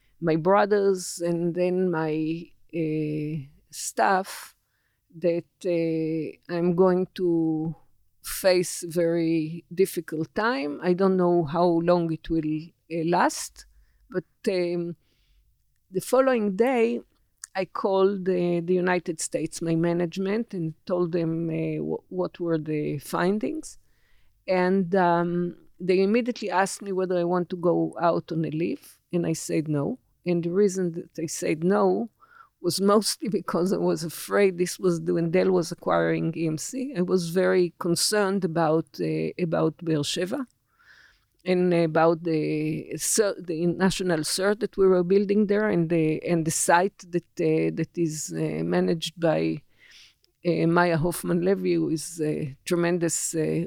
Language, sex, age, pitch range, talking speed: Hebrew, female, 50-69, 160-185 Hz, 140 wpm